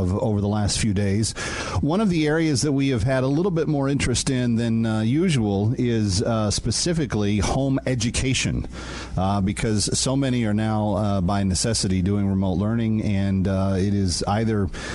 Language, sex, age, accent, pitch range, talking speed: English, male, 40-59, American, 95-125 Hz, 175 wpm